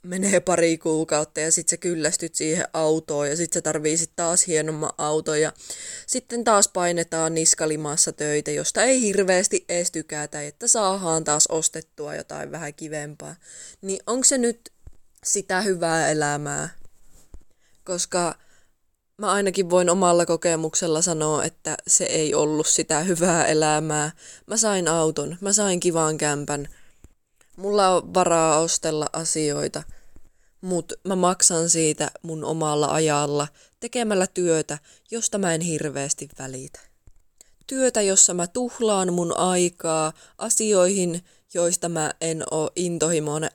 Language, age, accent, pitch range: Finnish, 20-39, native, 155-185 Hz